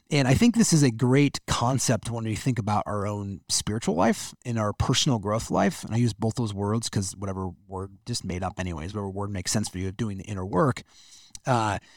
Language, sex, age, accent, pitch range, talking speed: English, male, 30-49, American, 105-135 Hz, 225 wpm